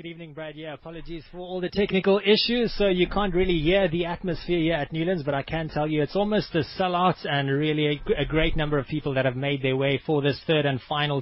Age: 20-39